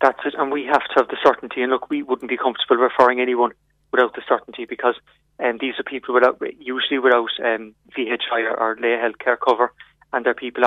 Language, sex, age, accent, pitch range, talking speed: English, male, 30-49, British, 115-125 Hz, 215 wpm